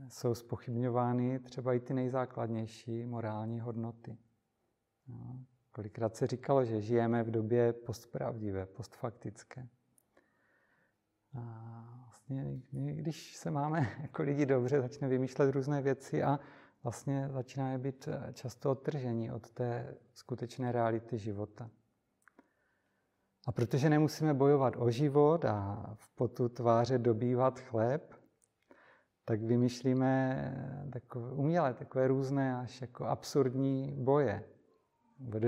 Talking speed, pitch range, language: 105 wpm, 115-135 Hz, Czech